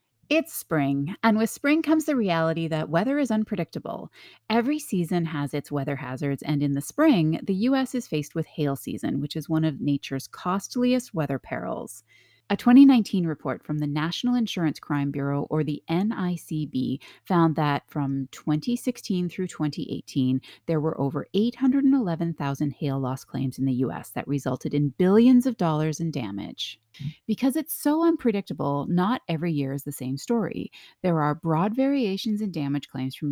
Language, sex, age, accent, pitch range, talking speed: English, female, 30-49, American, 145-235 Hz, 165 wpm